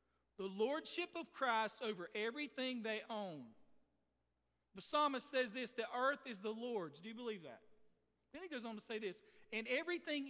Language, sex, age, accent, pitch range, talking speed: English, male, 50-69, American, 210-265 Hz, 175 wpm